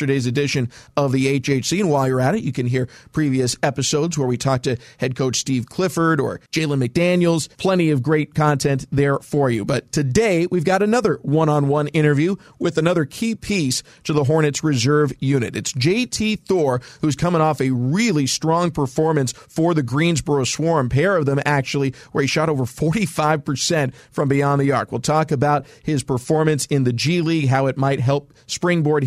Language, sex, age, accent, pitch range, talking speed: English, male, 40-59, American, 135-165 Hz, 185 wpm